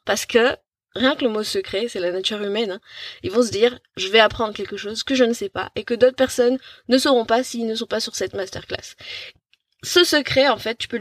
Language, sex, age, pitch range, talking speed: French, female, 20-39, 195-250 Hz, 250 wpm